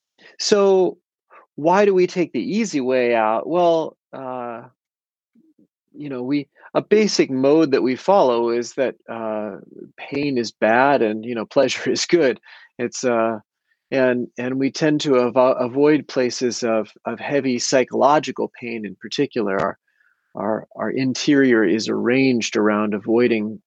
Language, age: English, 30-49